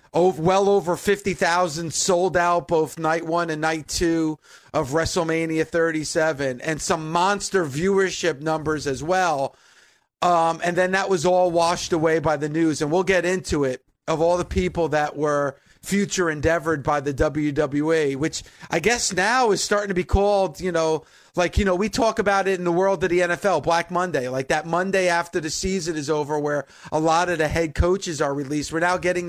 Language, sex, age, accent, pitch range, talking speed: English, male, 40-59, American, 150-180 Hz, 195 wpm